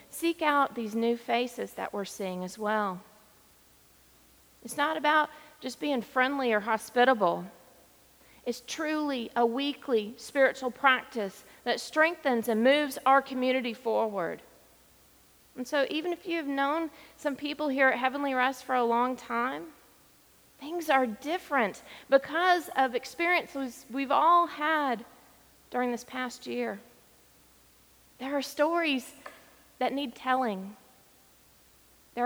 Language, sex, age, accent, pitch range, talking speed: English, female, 40-59, American, 225-290 Hz, 125 wpm